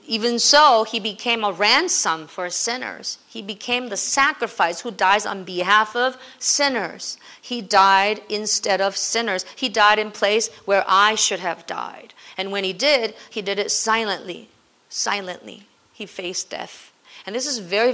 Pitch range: 185-235 Hz